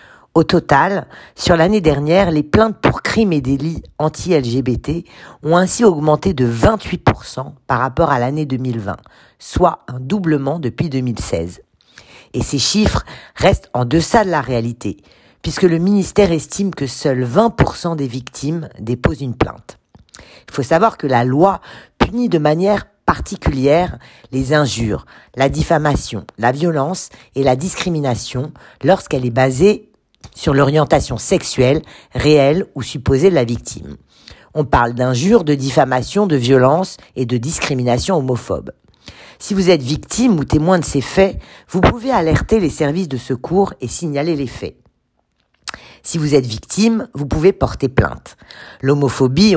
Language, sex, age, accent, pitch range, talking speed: French, female, 50-69, French, 125-170 Hz, 145 wpm